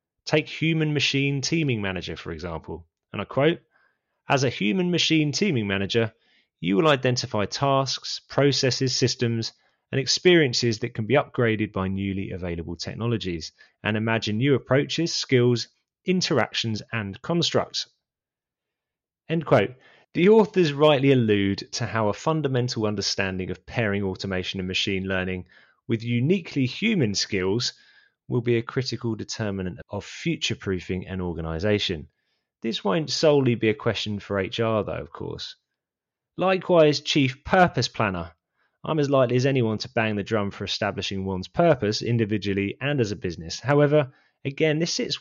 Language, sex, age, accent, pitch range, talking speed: English, male, 20-39, British, 100-140 Hz, 140 wpm